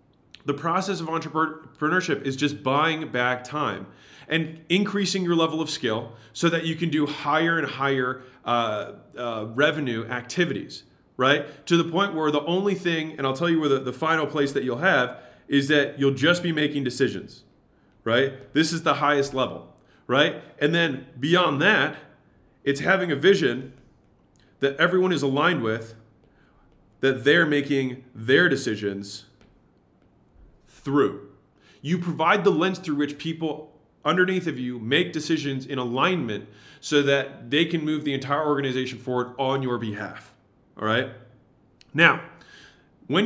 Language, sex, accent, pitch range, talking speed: English, male, American, 130-165 Hz, 155 wpm